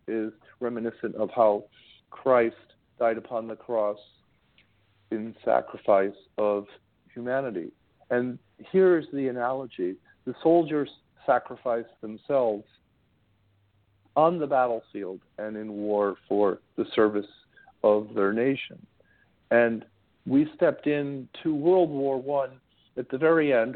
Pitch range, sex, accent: 110-130 Hz, male, American